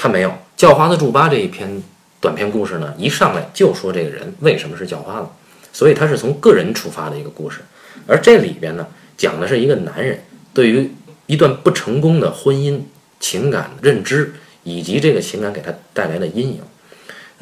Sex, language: male, Chinese